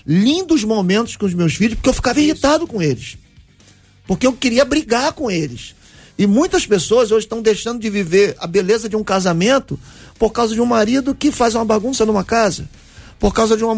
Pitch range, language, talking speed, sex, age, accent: 215-275 Hz, Portuguese, 200 wpm, male, 40-59, Brazilian